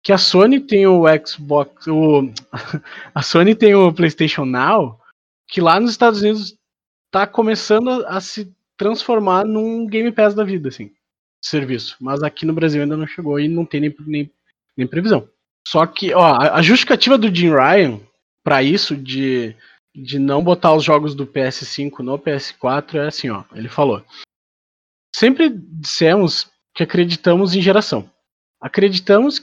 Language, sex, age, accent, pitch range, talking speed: Portuguese, male, 20-39, Brazilian, 150-210 Hz, 155 wpm